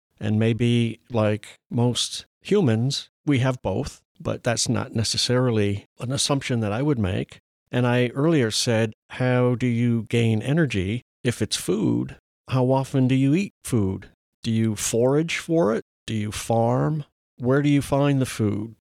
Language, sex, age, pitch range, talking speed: English, male, 50-69, 110-135 Hz, 160 wpm